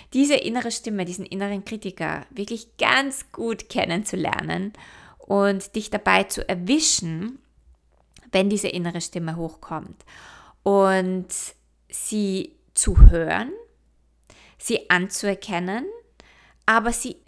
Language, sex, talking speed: German, female, 95 wpm